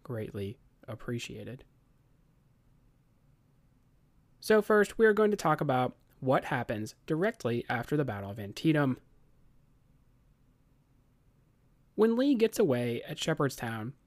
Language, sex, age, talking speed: English, male, 30-49, 100 wpm